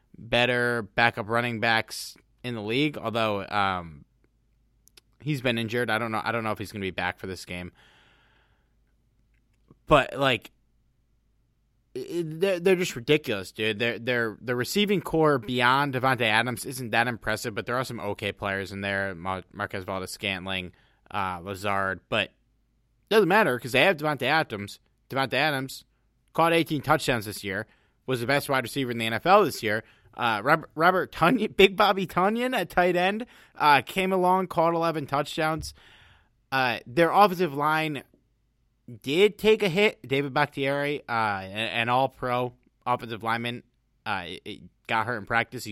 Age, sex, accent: 20-39, male, American